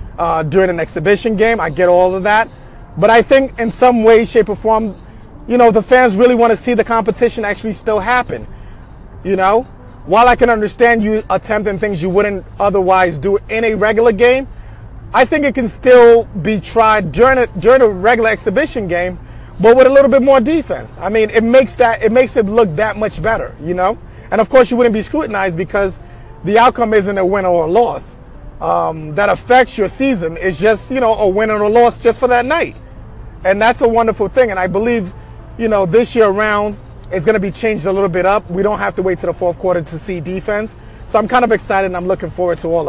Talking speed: 230 wpm